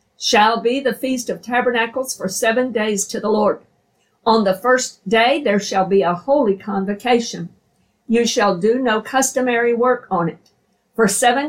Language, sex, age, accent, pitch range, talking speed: English, female, 50-69, American, 190-245 Hz, 165 wpm